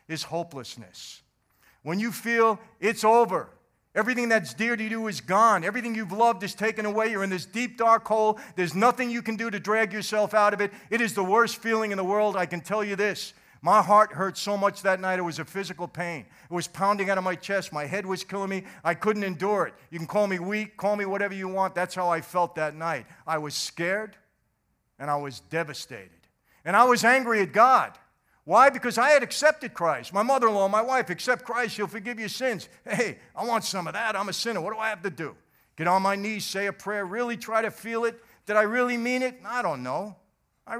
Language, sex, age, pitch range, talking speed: English, male, 50-69, 175-225 Hz, 235 wpm